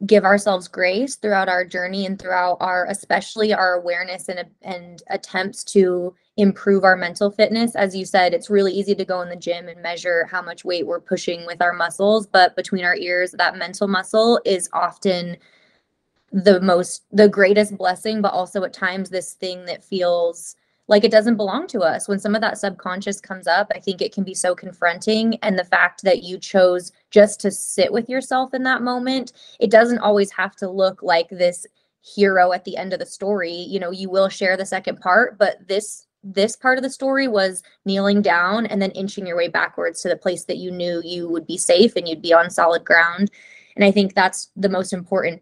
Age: 20-39